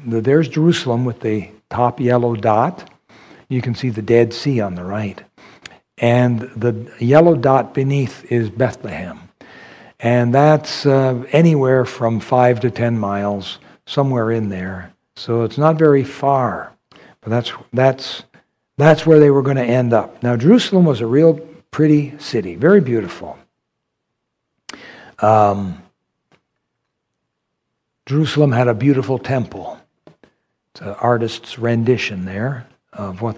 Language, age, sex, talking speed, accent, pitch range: English, 60-79, male, 130 wpm, American, 115-140 Hz